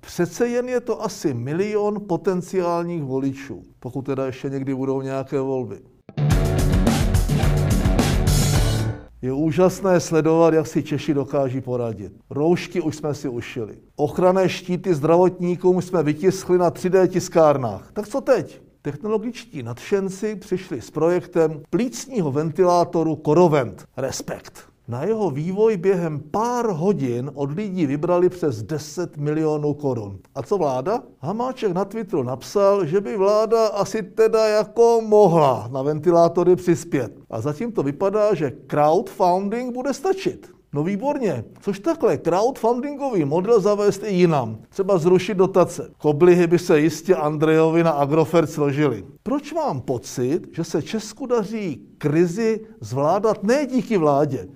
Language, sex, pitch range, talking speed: Czech, male, 140-200 Hz, 130 wpm